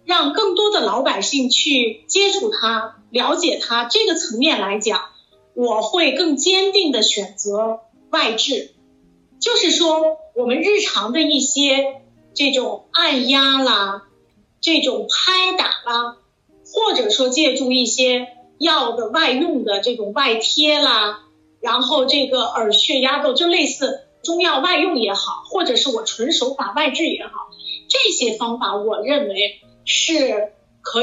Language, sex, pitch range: Chinese, female, 225-320 Hz